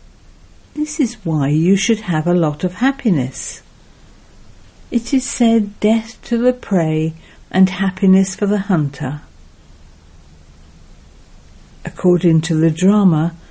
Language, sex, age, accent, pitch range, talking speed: English, female, 60-79, British, 160-205 Hz, 115 wpm